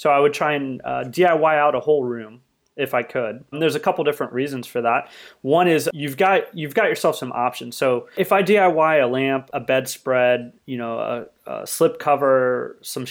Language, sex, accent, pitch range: English, male, American, 125-155 Hz